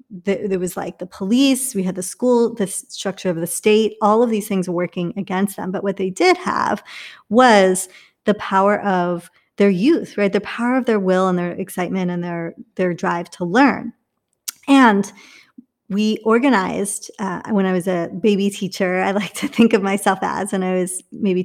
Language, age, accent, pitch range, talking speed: English, 30-49, American, 180-215 Hz, 195 wpm